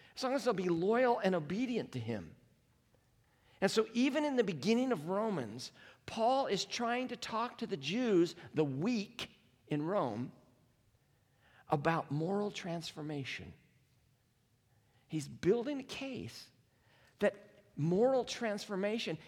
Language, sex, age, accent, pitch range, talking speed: English, male, 50-69, American, 145-225 Hz, 125 wpm